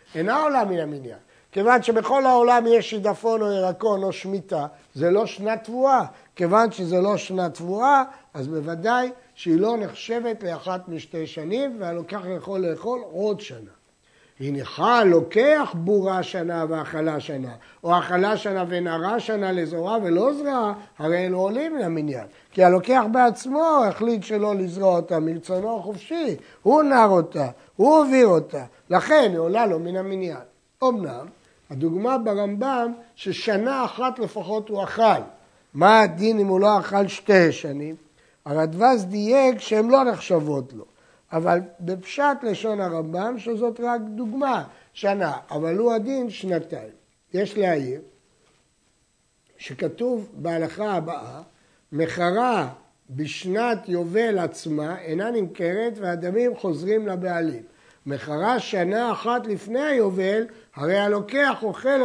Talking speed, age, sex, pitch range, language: 130 wpm, 60-79, male, 170-235 Hz, Hebrew